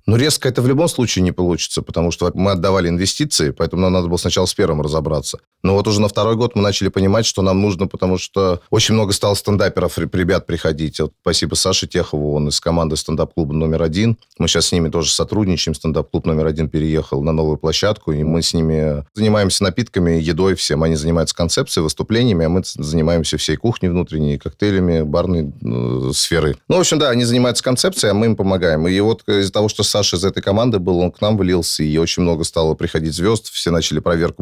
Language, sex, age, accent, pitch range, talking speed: Russian, male, 30-49, native, 80-95 Hz, 210 wpm